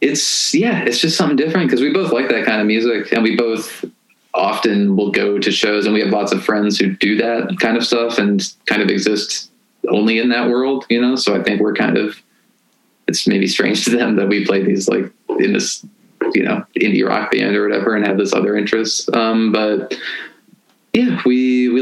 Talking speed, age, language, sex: 215 wpm, 20-39, English, male